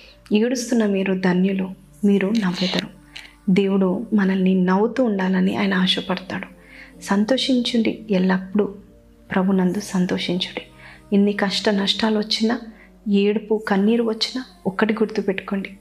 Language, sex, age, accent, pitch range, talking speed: Telugu, female, 30-49, native, 190-220 Hz, 85 wpm